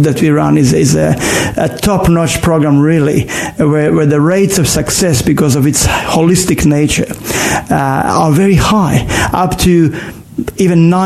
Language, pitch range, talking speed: English, 140-170 Hz, 155 wpm